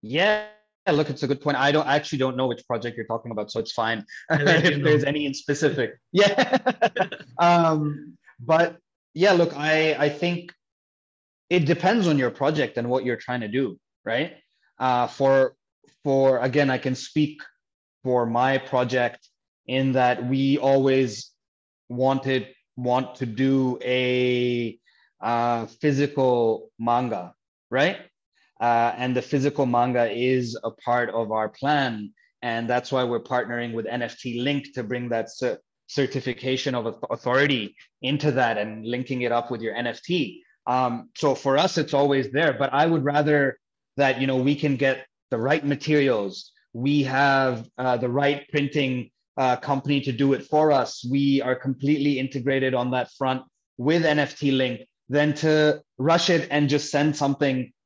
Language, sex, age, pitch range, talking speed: English, male, 20-39, 125-145 Hz, 160 wpm